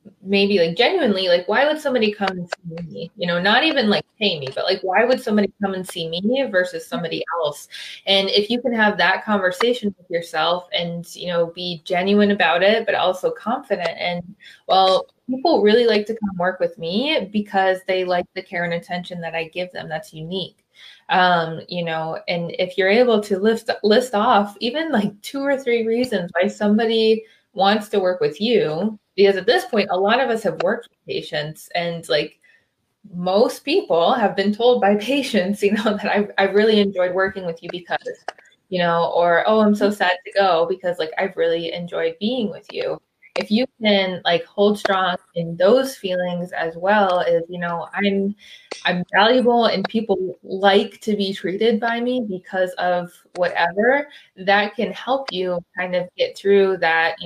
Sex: female